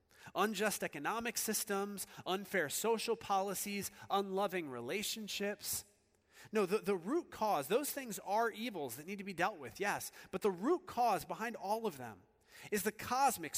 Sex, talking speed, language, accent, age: male, 155 wpm, English, American, 40-59